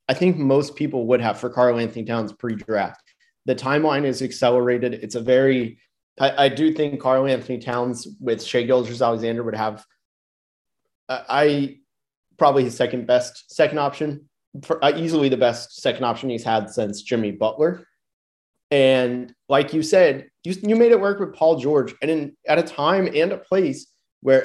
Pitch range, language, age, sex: 115-145 Hz, English, 30-49, male